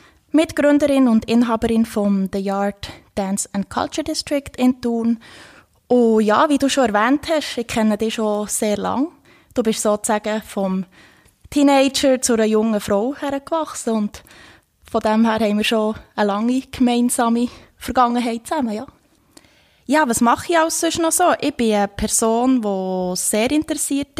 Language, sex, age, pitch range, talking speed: German, female, 20-39, 210-250 Hz, 155 wpm